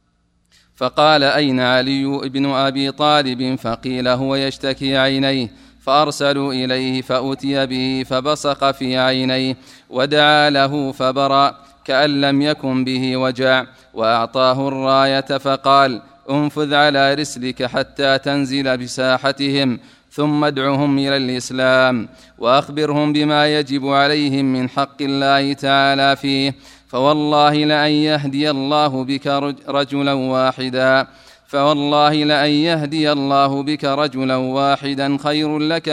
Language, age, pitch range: Arabic, 30-49, 130-140 Hz